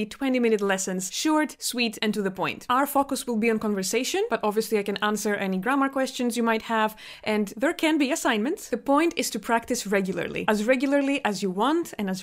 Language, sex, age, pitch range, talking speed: Greek, female, 20-39, 205-260 Hz, 210 wpm